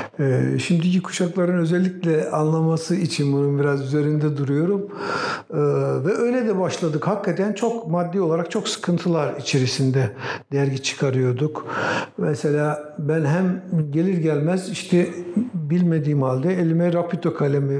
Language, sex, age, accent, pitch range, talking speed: Turkish, male, 60-79, native, 150-180 Hz, 120 wpm